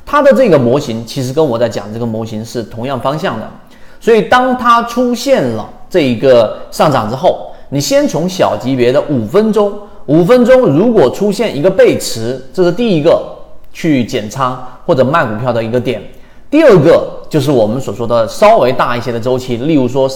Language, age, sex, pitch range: Chinese, 40-59, male, 120-185 Hz